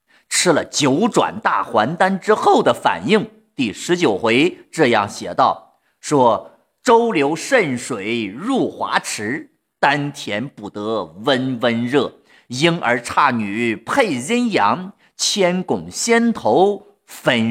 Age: 50-69